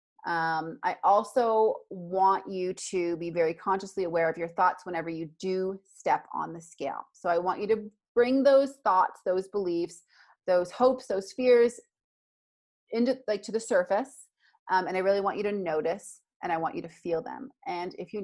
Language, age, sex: English, 30-49, female